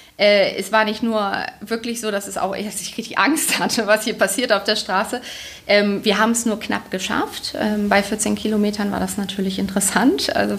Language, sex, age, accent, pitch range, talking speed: German, female, 30-49, German, 200-240 Hz, 210 wpm